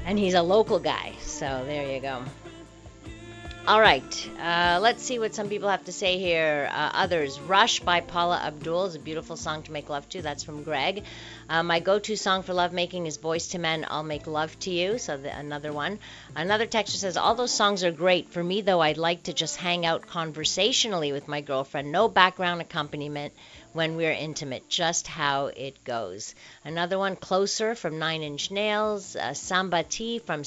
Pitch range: 145-185 Hz